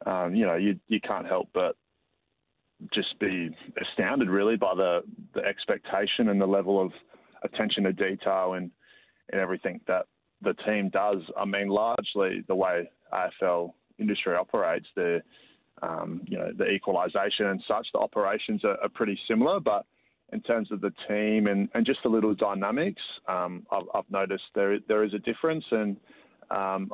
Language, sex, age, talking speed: English, male, 20-39, 165 wpm